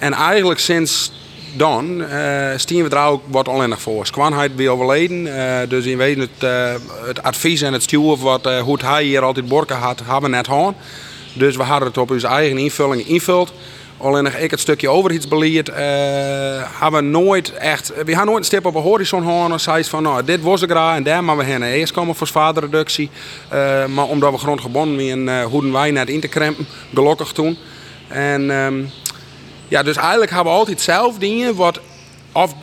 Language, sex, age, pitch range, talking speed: Dutch, male, 30-49, 130-155 Hz, 200 wpm